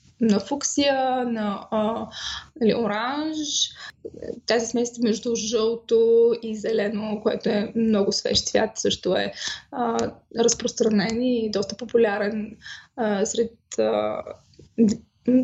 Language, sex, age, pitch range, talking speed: Bulgarian, female, 20-39, 220-255 Hz, 105 wpm